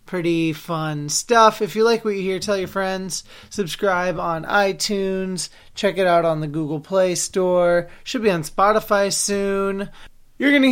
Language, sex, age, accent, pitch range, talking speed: English, male, 30-49, American, 170-205 Hz, 170 wpm